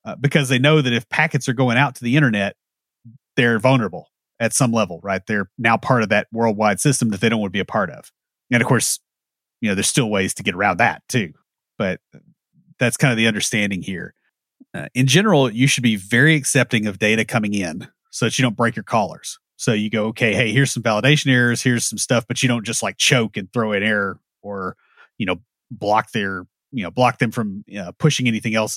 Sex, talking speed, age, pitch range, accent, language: male, 225 wpm, 30-49, 110-130 Hz, American, English